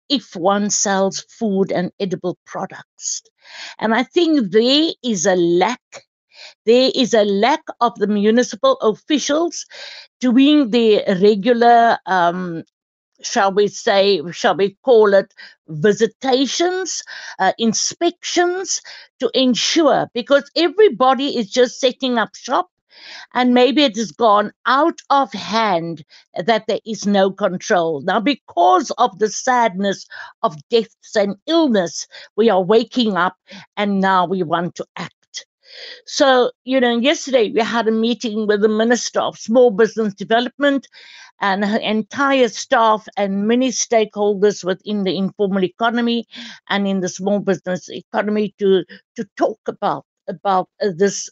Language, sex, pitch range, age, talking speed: English, female, 195-255 Hz, 50-69, 135 wpm